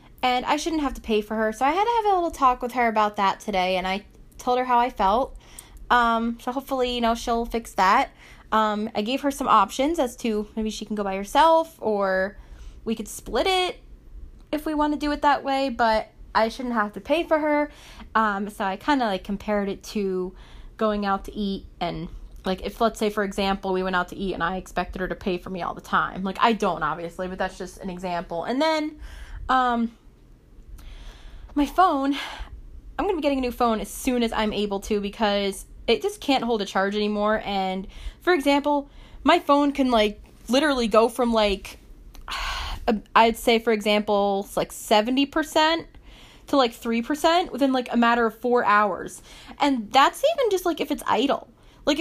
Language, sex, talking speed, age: English, female, 205 wpm, 20-39